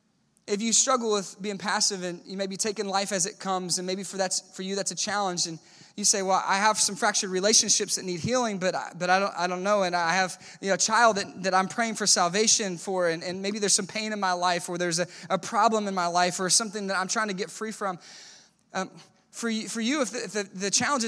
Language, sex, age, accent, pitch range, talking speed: English, male, 20-39, American, 190-230 Hz, 270 wpm